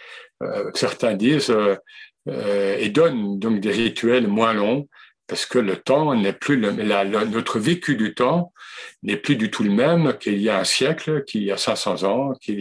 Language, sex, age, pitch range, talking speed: French, male, 60-79, 115-170 Hz, 190 wpm